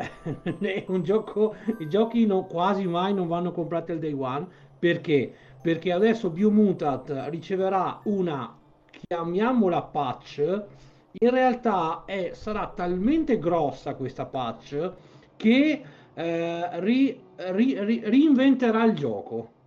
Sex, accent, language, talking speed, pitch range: male, native, Italian, 110 wpm, 150-215 Hz